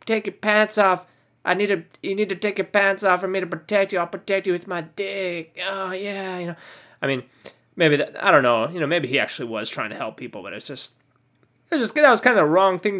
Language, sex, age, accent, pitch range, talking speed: English, male, 20-39, American, 135-205 Hz, 265 wpm